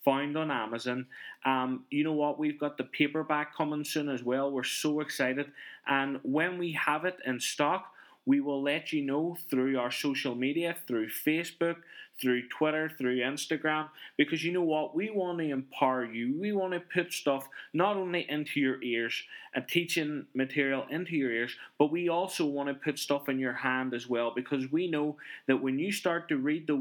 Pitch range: 130-165 Hz